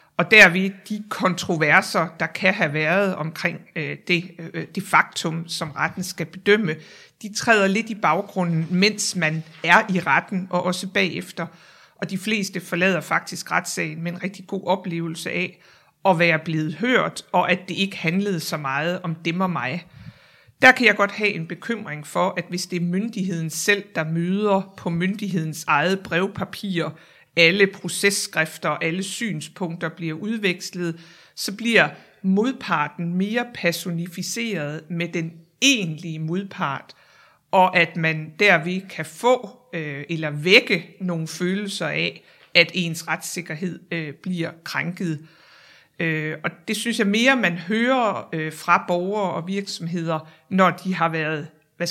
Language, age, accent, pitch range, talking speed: Danish, 60-79, native, 165-195 Hz, 145 wpm